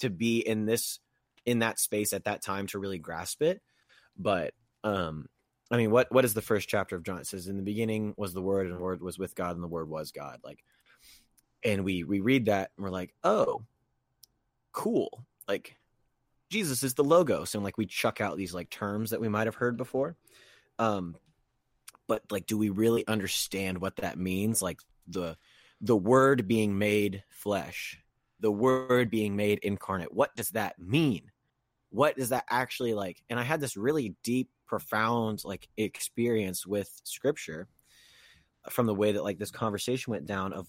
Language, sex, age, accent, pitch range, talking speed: English, male, 30-49, American, 95-120 Hz, 185 wpm